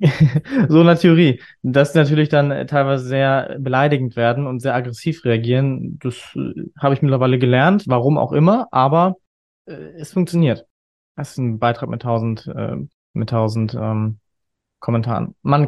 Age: 20-39